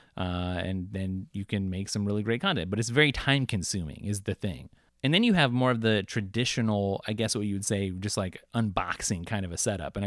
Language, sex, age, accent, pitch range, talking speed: English, male, 30-49, American, 100-115 Hz, 230 wpm